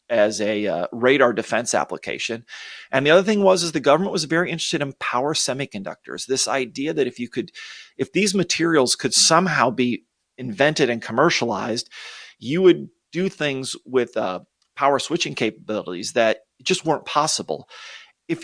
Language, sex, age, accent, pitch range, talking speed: English, male, 40-59, American, 115-165 Hz, 160 wpm